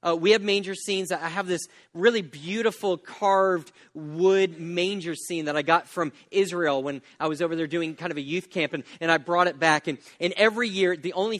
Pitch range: 150-180 Hz